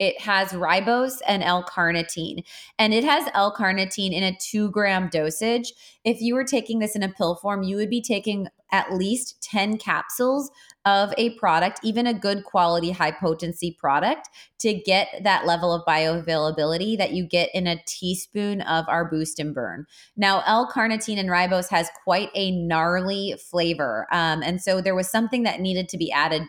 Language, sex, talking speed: English, female, 175 wpm